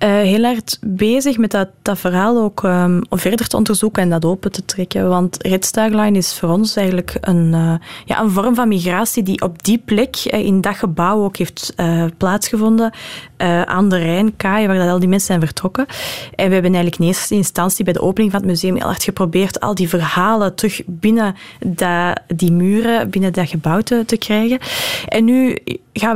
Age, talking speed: 20-39, 190 wpm